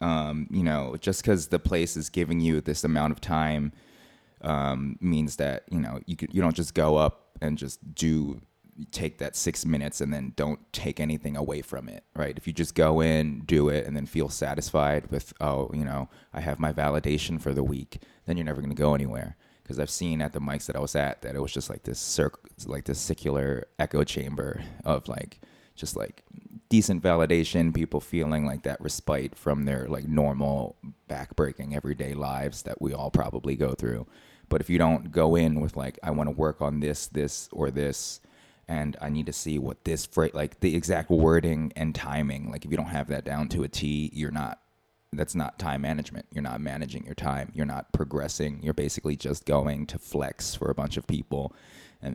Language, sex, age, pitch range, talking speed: English, male, 20-39, 70-80 Hz, 210 wpm